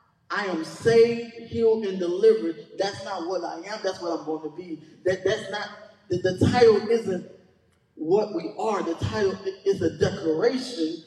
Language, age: English, 20-39